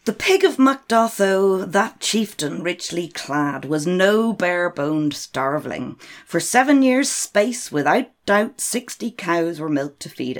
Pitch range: 155-225 Hz